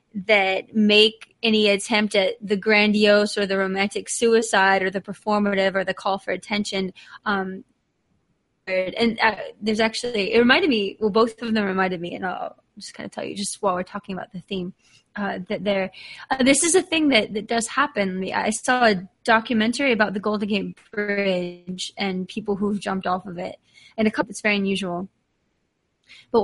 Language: English